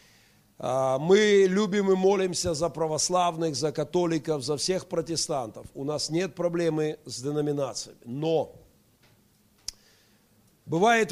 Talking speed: 105 wpm